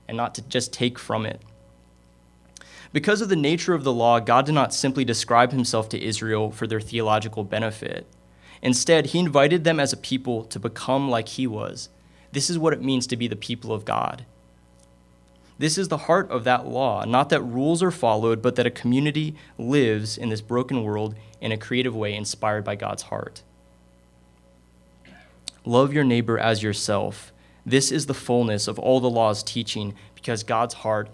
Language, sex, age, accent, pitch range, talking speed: English, male, 20-39, American, 105-130 Hz, 185 wpm